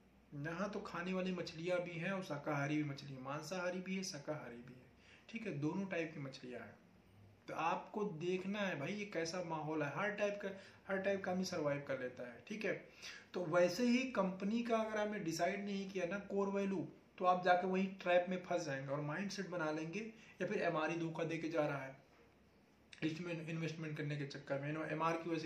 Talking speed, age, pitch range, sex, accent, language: 200 wpm, 30-49, 140-180 Hz, male, native, Hindi